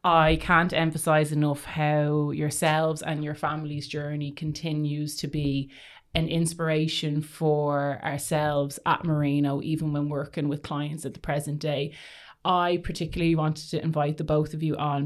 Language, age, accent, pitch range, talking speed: English, 30-49, Irish, 150-170 Hz, 150 wpm